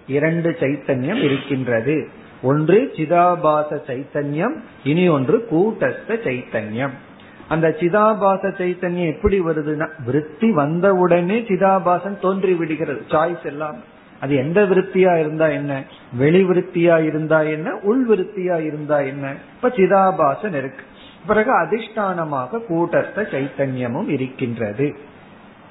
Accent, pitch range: native, 145-180 Hz